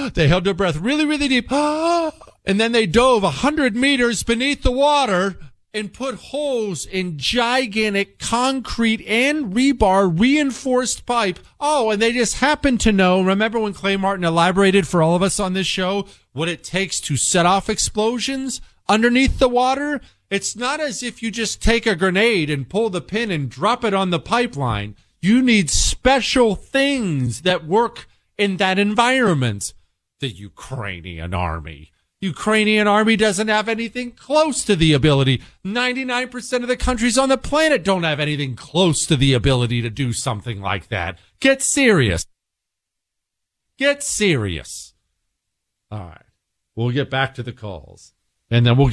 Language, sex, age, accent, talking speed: English, male, 40-59, American, 160 wpm